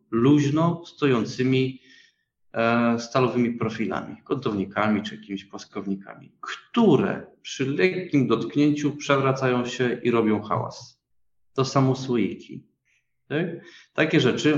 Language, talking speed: Polish, 90 wpm